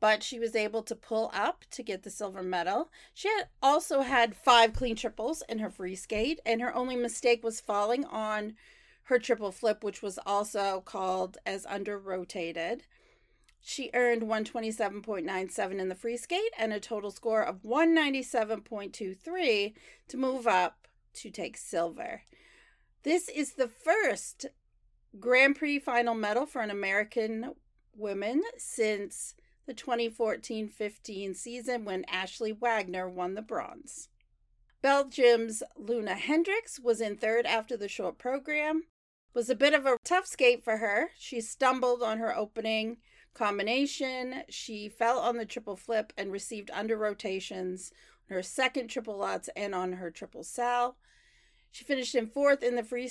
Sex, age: female, 40-59